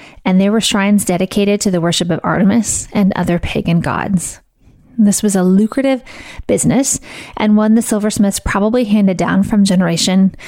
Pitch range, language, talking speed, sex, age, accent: 180-220 Hz, English, 160 wpm, female, 20-39, American